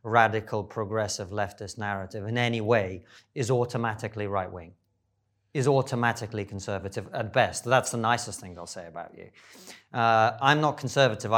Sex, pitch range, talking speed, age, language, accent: male, 105-120 Hz, 150 wpm, 30-49, English, British